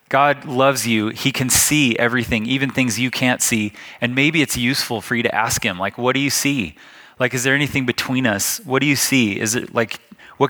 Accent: American